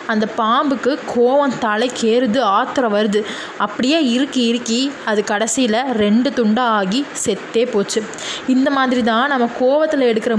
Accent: native